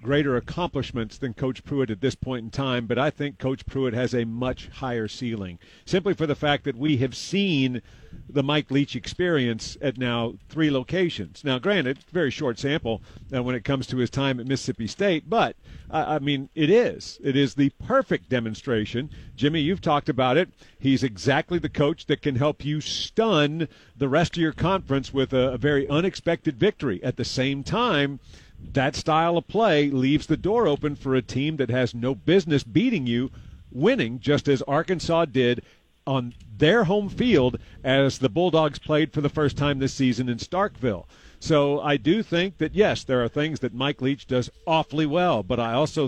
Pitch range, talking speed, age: 125-155 Hz, 190 wpm, 50-69